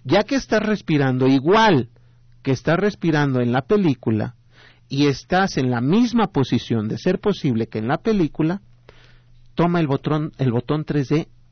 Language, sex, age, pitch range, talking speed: Spanish, male, 50-69, 120-150 Hz, 155 wpm